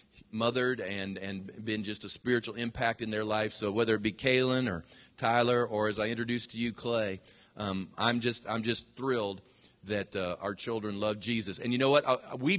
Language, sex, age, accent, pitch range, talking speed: English, male, 40-59, American, 100-125 Hz, 205 wpm